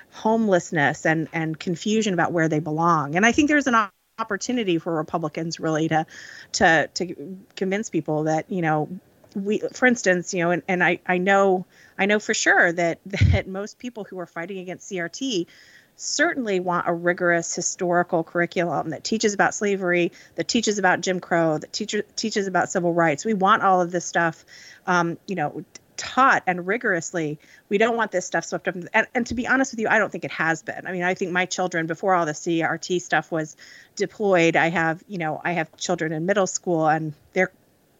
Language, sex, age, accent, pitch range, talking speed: English, female, 30-49, American, 170-200 Hz, 200 wpm